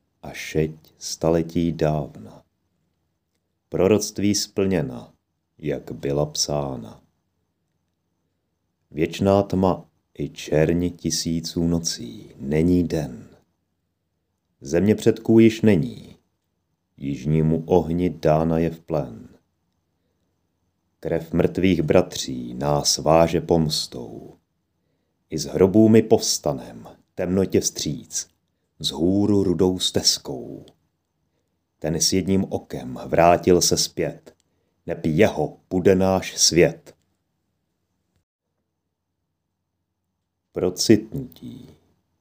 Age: 40-59